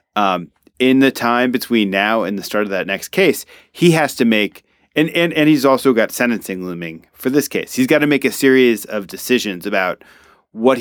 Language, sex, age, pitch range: English, male, 30-49, 105-130 Hz